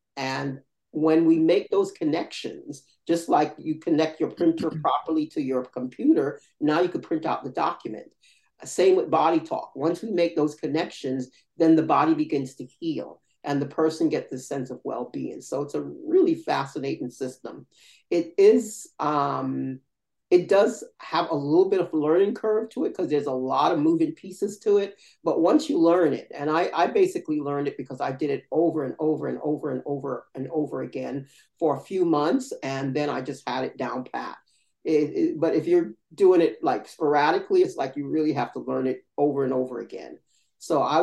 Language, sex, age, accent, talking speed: English, male, 40-59, American, 195 wpm